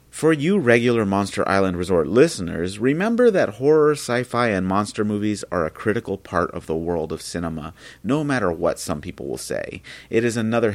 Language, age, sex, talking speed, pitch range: English, 30-49, male, 185 wpm, 90-115 Hz